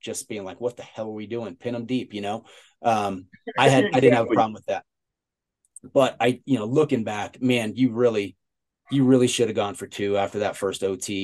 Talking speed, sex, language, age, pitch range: 235 wpm, male, English, 30-49, 105-150 Hz